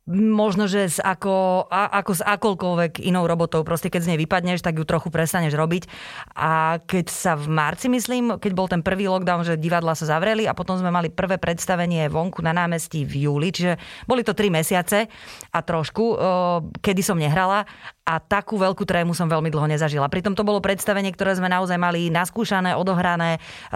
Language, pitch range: Slovak, 165-195 Hz